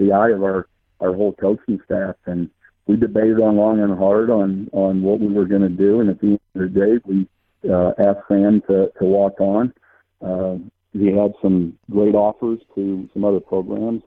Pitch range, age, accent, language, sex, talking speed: 95-105 Hz, 50-69, American, English, male, 205 wpm